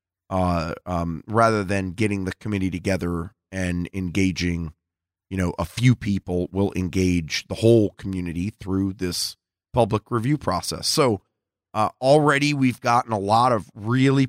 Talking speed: 145 wpm